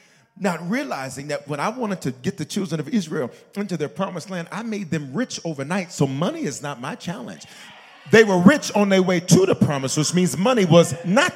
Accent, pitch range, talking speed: American, 145-225 Hz, 215 wpm